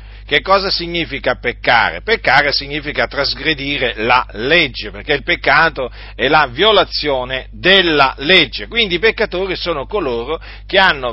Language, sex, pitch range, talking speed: Italian, male, 110-185 Hz, 130 wpm